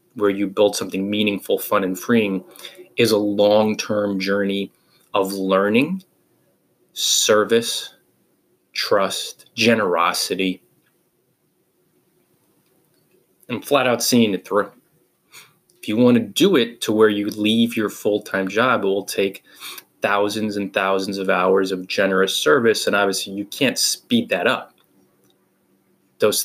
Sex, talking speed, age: male, 120 wpm, 20-39